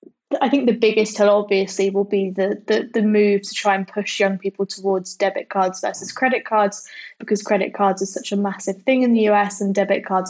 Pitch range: 195-215 Hz